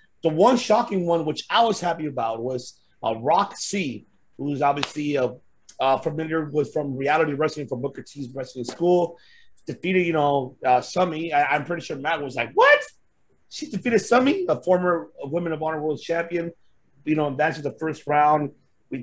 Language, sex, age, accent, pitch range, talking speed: English, male, 30-49, American, 145-175 Hz, 180 wpm